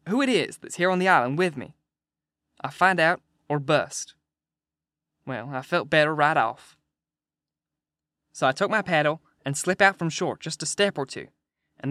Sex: male